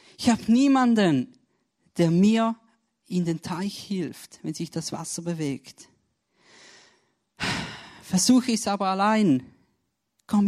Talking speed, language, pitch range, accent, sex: 115 wpm, German, 170-210 Hz, German, male